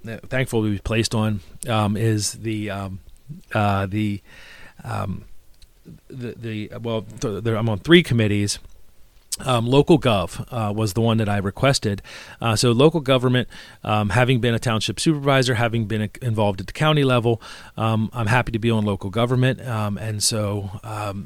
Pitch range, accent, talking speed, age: 105-125 Hz, American, 170 wpm, 40-59